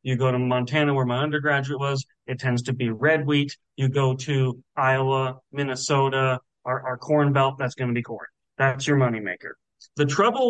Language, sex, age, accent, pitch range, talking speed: English, male, 30-49, American, 135-165 Hz, 195 wpm